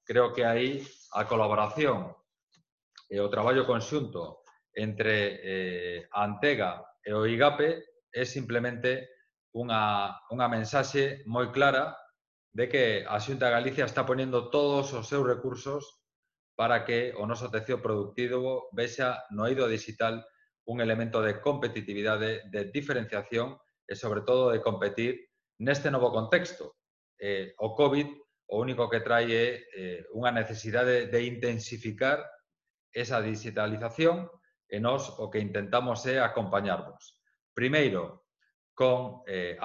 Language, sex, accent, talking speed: Spanish, male, Spanish, 125 wpm